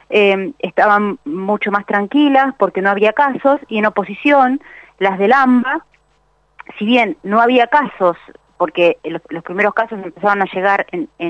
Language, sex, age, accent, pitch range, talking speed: Spanish, female, 30-49, Argentinian, 195-250 Hz, 150 wpm